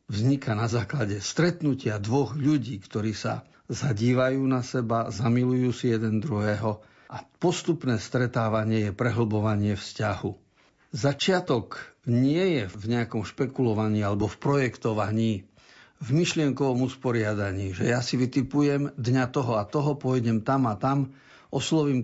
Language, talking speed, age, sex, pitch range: Slovak, 125 wpm, 50-69, male, 110-135 Hz